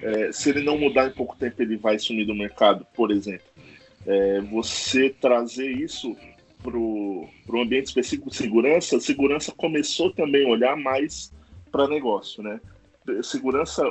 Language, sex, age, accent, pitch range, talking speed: Portuguese, male, 20-39, Brazilian, 105-155 Hz, 145 wpm